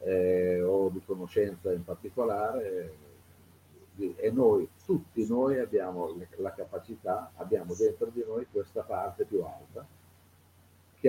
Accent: native